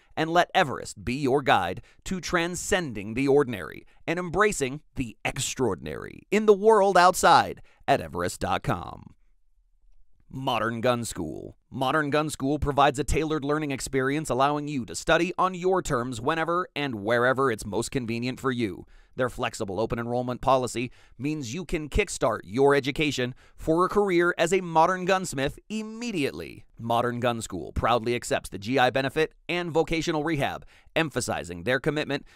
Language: English